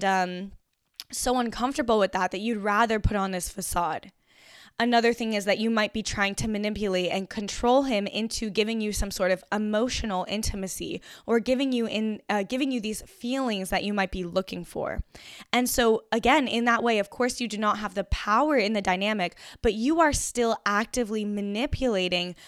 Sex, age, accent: female, 10-29, American